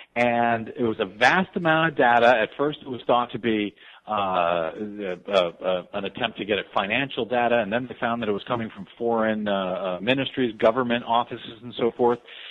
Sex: male